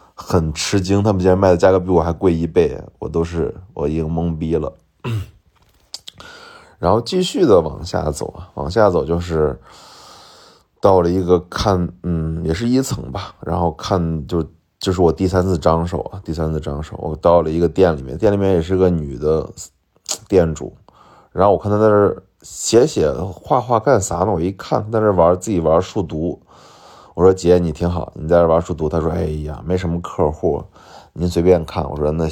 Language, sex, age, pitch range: Chinese, male, 20-39, 80-95 Hz